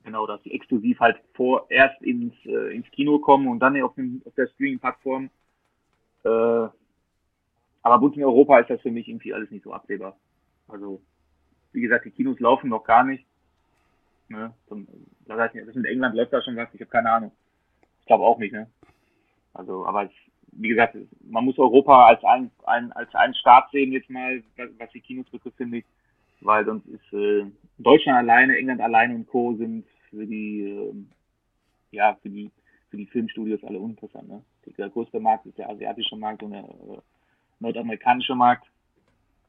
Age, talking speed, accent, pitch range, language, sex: 30-49, 180 wpm, German, 105-130 Hz, German, male